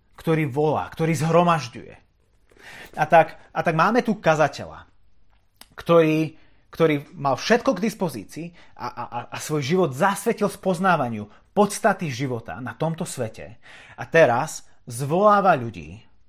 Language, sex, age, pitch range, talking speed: Slovak, male, 30-49, 105-165 Hz, 120 wpm